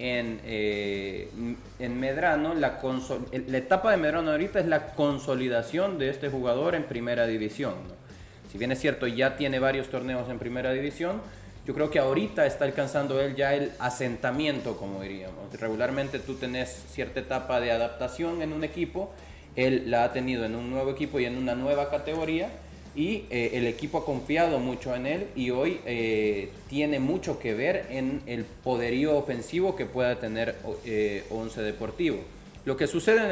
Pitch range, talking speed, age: 115-145 Hz, 175 wpm, 30-49